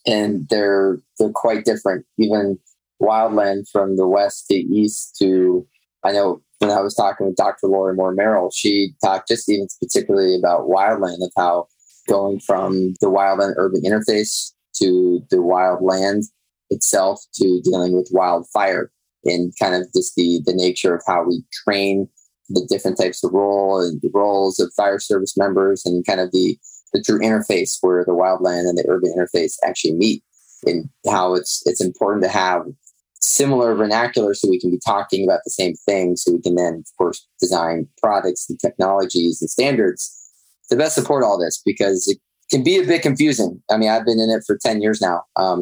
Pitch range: 90-105 Hz